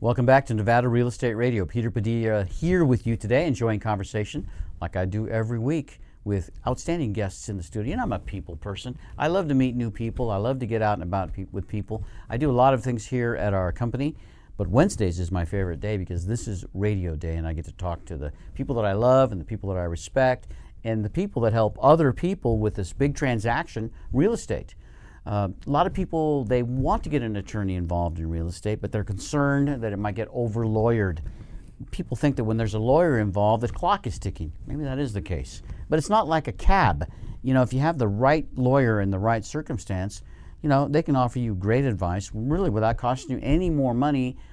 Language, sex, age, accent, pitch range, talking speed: English, male, 50-69, American, 100-130 Hz, 230 wpm